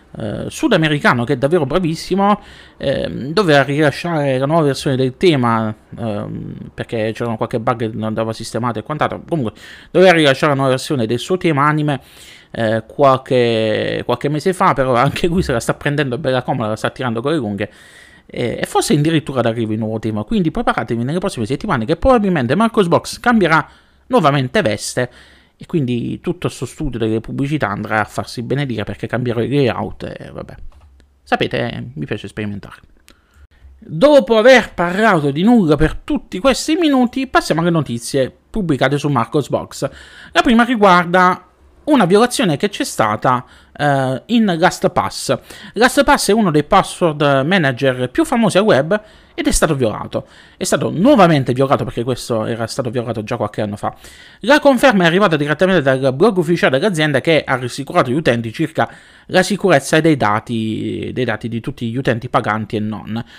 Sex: male